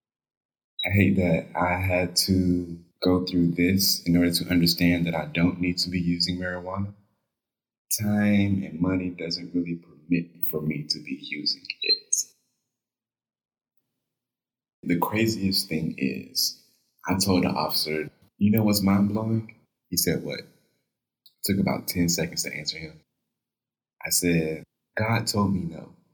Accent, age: American, 30-49